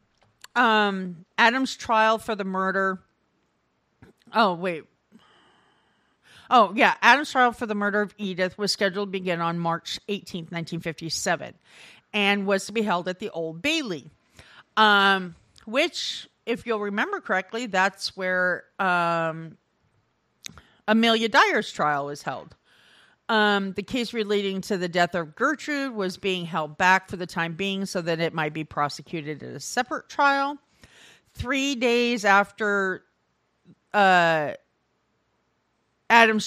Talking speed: 130 wpm